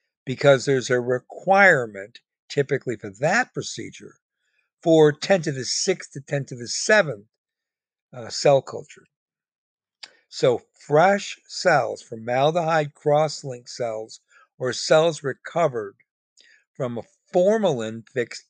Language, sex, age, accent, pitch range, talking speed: English, male, 60-79, American, 125-170 Hz, 105 wpm